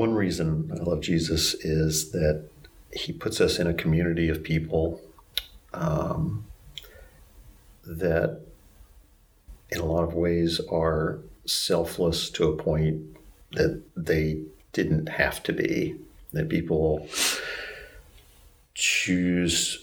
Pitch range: 75-85 Hz